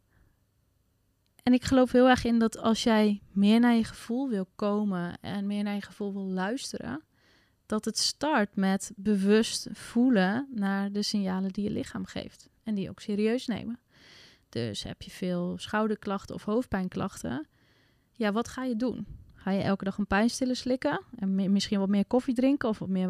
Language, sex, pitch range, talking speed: Dutch, female, 190-235 Hz, 180 wpm